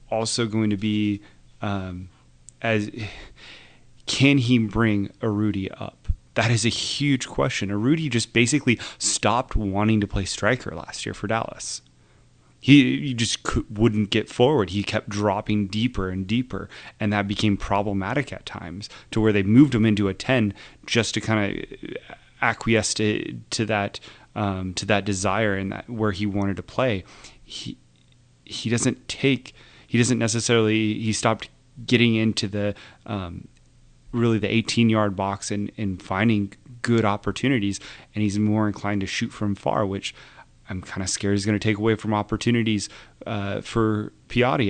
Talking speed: 160 wpm